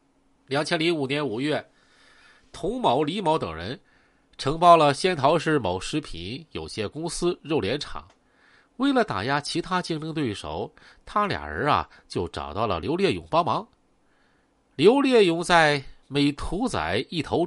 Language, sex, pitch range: Chinese, male, 135-180 Hz